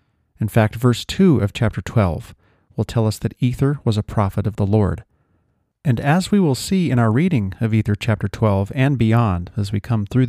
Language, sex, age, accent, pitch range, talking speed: English, male, 40-59, American, 100-125 Hz, 210 wpm